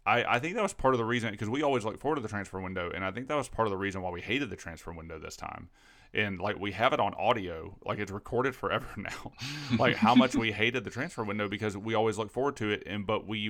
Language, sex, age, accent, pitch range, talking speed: English, male, 30-49, American, 95-120 Hz, 290 wpm